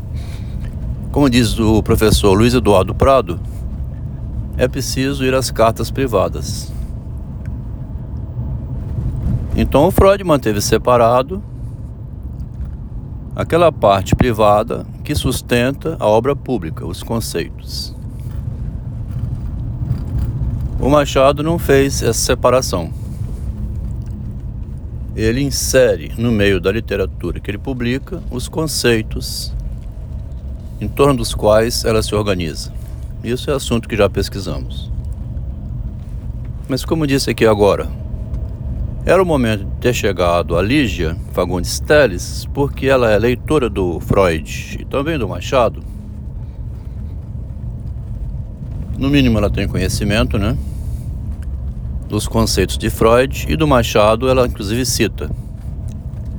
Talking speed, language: 105 wpm, Portuguese